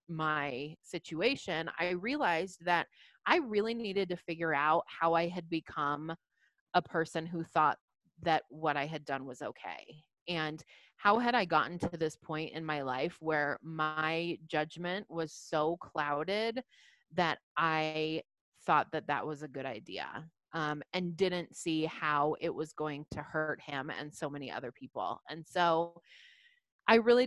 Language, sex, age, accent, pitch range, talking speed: English, female, 30-49, American, 155-195 Hz, 160 wpm